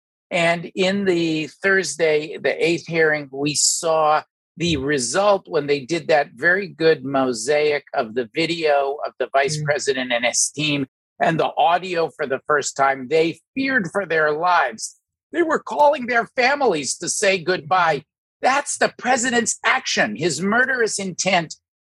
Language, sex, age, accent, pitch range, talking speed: English, male, 50-69, American, 135-180 Hz, 150 wpm